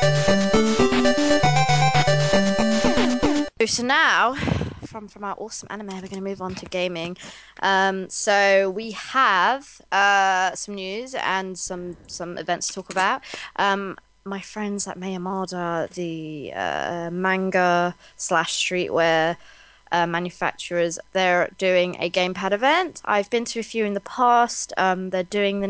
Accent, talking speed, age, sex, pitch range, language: British, 135 wpm, 20-39, female, 180-220 Hz, English